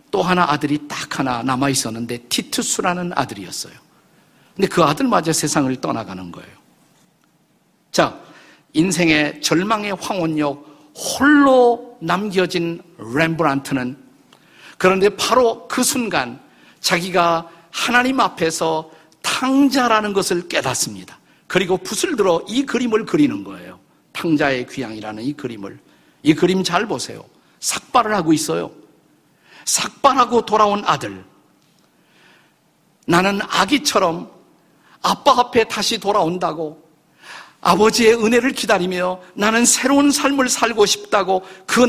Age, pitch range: 50-69, 150-220 Hz